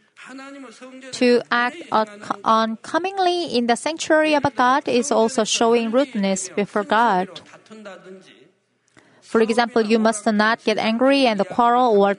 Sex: female